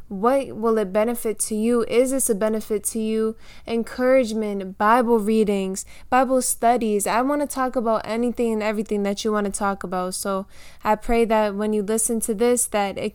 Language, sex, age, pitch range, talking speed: English, female, 10-29, 210-235 Hz, 190 wpm